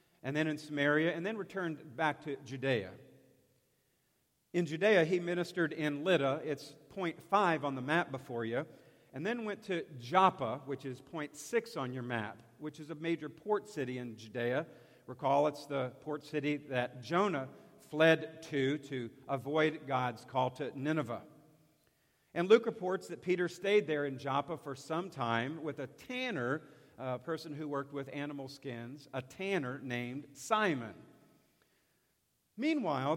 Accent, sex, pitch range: American, male, 135-165 Hz